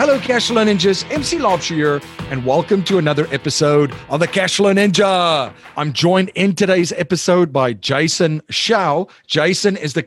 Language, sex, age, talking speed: English, male, 40-59, 155 wpm